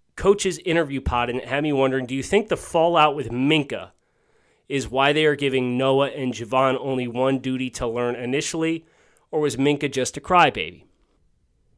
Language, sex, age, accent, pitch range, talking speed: English, male, 20-39, American, 115-145 Hz, 180 wpm